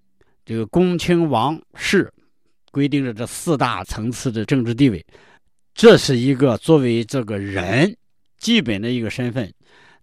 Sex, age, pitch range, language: male, 50-69, 110-155 Hz, Chinese